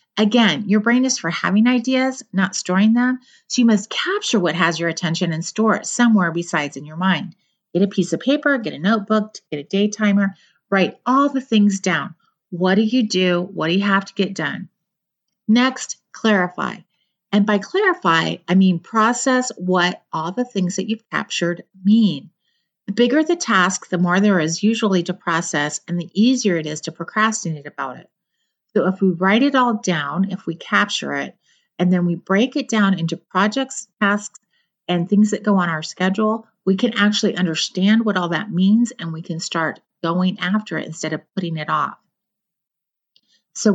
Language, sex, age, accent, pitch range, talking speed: English, female, 40-59, American, 175-220 Hz, 190 wpm